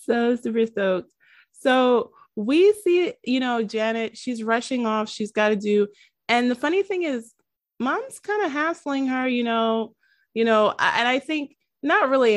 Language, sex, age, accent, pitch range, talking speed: English, female, 20-39, American, 180-245 Hz, 170 wpm